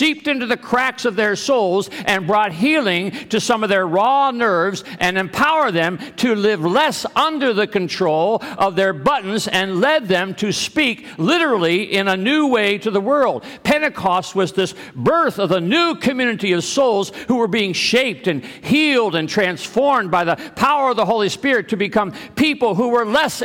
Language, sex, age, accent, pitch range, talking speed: English, male, 60-79, American, 190-250 Hz, 185 wpm